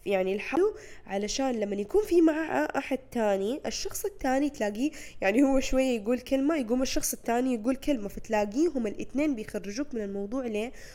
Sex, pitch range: female, 210-295 Hz